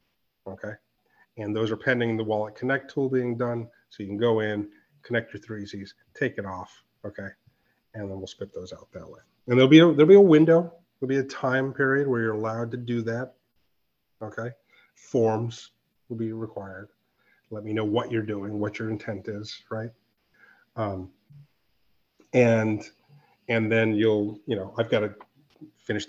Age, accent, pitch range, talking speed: 30-49, American, 105-135 Hz, 180 wpm